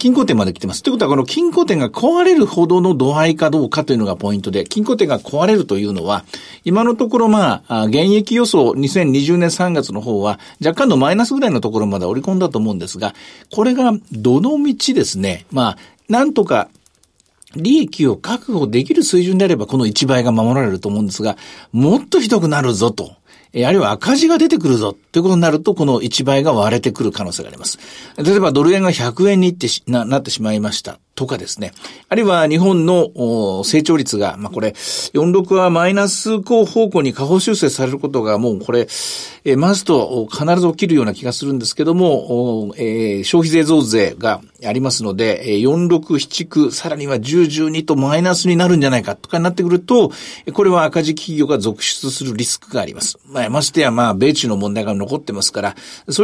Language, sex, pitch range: Japanese, male, 120-195 Hz